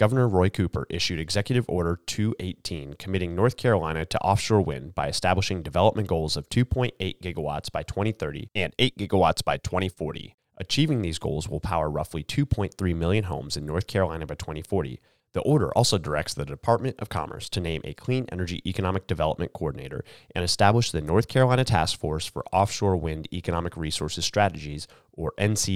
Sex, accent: male, American